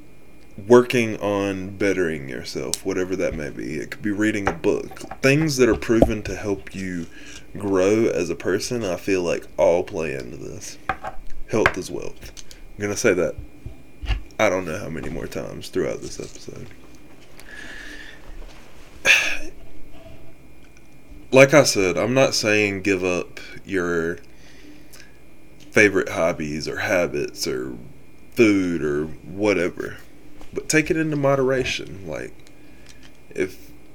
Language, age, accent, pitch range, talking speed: English, 20-39, American, 95-125 Hz, 130 wpm